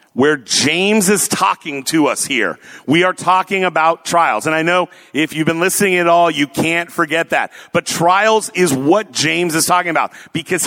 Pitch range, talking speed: 160-210 Hz, 190 wpm